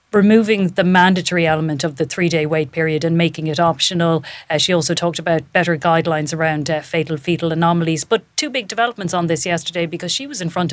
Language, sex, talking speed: English, female, 205 wpm